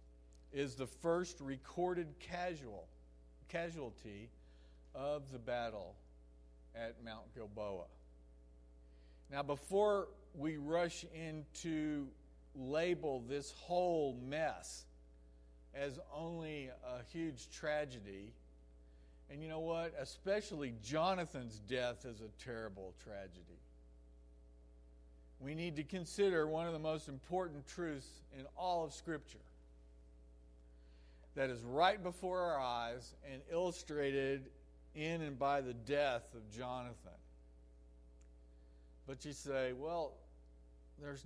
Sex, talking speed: male, 105 wpm